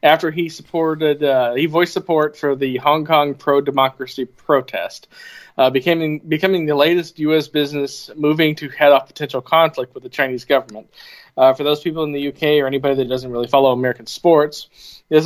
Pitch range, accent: 135-150 Hz, American